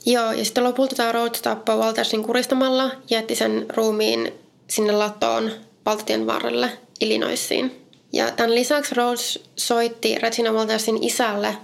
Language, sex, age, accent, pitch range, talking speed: Finnish, female, 20-39, native, 215-235 Hz, 135 wpm